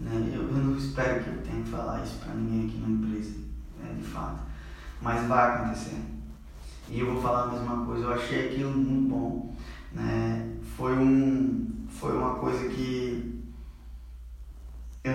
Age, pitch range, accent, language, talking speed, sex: 10-29, 110-135 Hz, Brazilian, Portuguese, 165 wpm, male